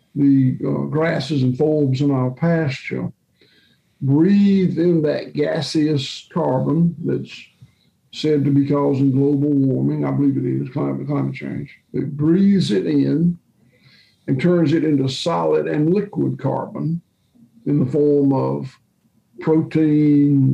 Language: English